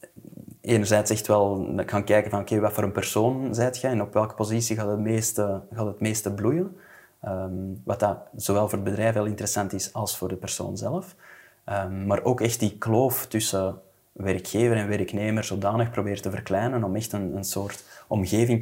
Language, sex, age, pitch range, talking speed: Dutch, male, 20-39, 100-120 Hz, 195 wpm